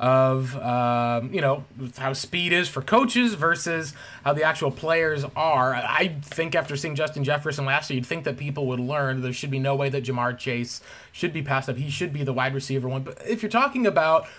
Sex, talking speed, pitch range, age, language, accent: male, 220 wpm, 135-170 Hz, 20-39, English, American